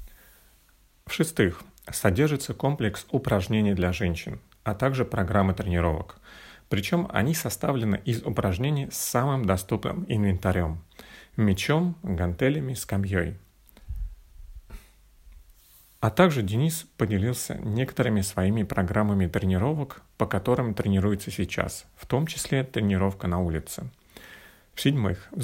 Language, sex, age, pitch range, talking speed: Russian, male, 40-59, 95-120 Hz, 100 wpm